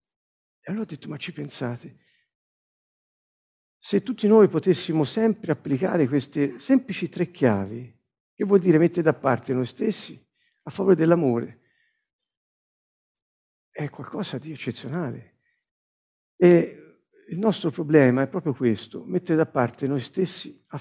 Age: 50-69